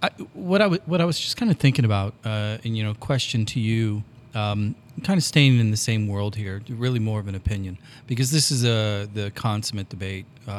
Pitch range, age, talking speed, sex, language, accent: 100-125 Hz, 30-49, 225 wpm, male, English, American